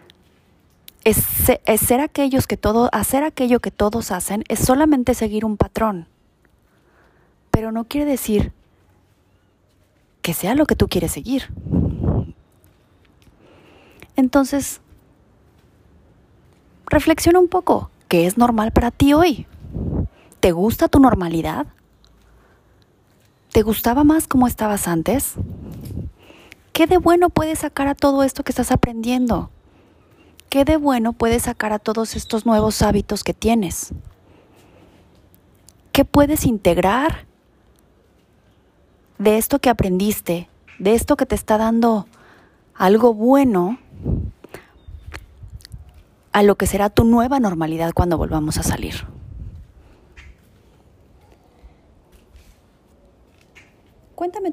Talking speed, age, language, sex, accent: 105 wpm, 30-49, Spanish, female, Mexican